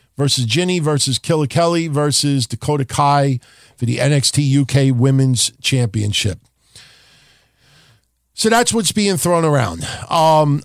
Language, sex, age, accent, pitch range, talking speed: English, male, 50-69, American, 135-185 Hz, 120 wpm